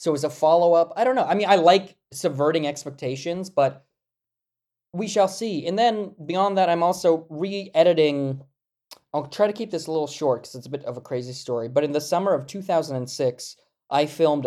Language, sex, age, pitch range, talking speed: English, male, 20-39, 135-170 Hz, 200 wpm